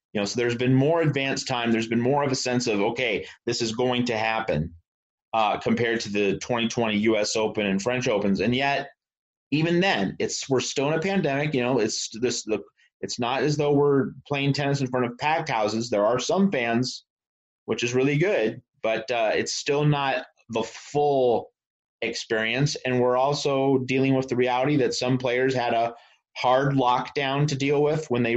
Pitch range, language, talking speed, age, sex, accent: 120-140 Hz, English, 200 wpm, 30-49, male, American